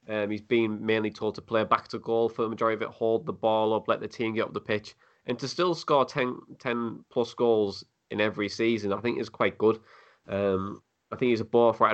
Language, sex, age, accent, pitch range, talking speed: English, male, 20-39, British, 100-115 Hz, 245 wpm